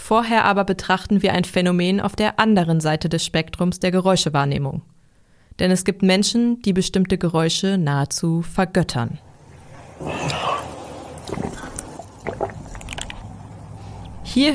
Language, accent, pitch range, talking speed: German, German, 170-205 Hz, 100 wpm